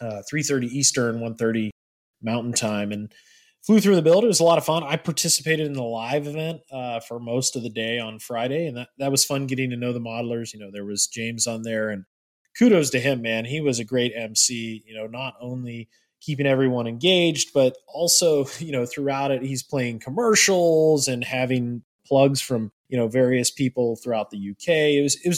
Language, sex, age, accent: English, male, 20-39, American